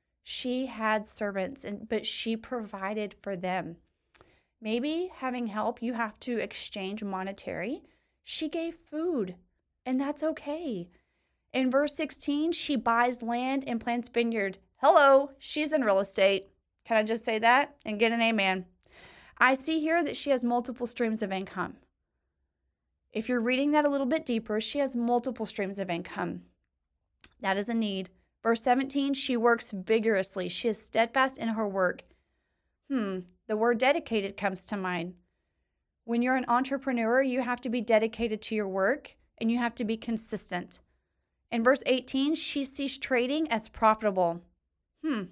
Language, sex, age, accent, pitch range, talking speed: English, female, 30-49, American, 195-260 Hz, 160 wpm